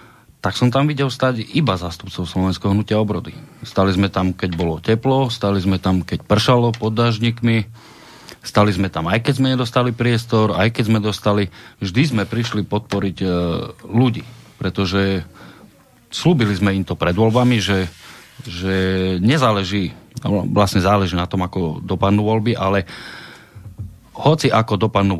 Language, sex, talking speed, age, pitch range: Slovak, male, 145 wpm, 40-59, 90-115 Hz